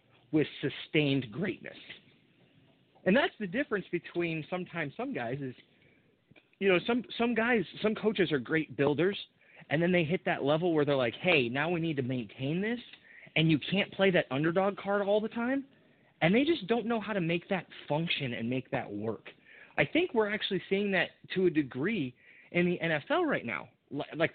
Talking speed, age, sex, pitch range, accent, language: 190 wpm, 30-49, male, 135-195 Hz, American, English